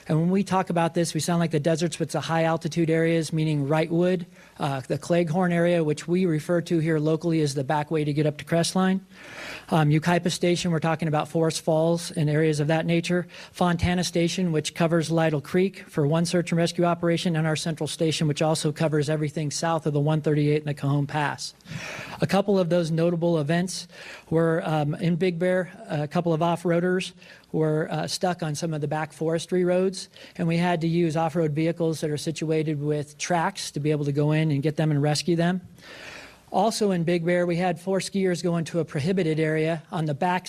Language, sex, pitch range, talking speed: English, male, 155-175 Hz, 210 wpm